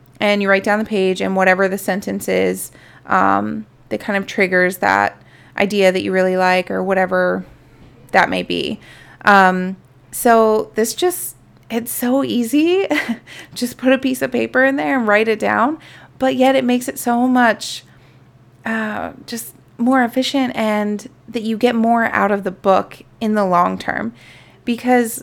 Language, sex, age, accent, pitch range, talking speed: English, female, 30-49, American, 185-230 Hz, 170 wpm